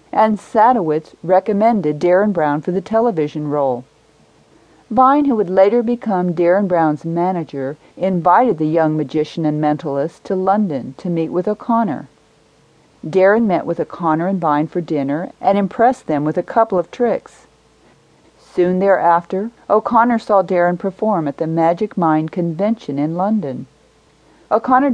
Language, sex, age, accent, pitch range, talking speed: English, female, 40-59, American, 155-210 Hz, 140 wpm